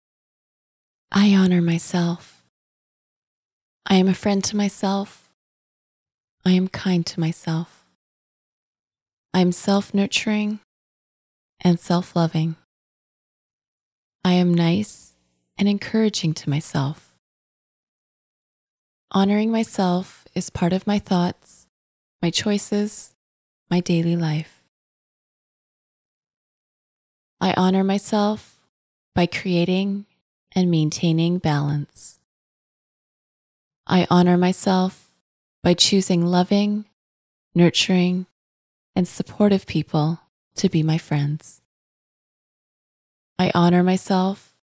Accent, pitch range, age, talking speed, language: American, 155-190 Hz, 20-39, 85 wpm, English